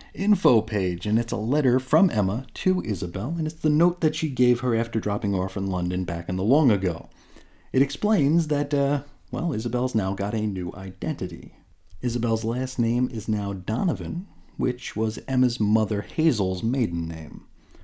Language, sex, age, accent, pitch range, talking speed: English, male, 30-49, American, 105-140 Hz, 175 wpm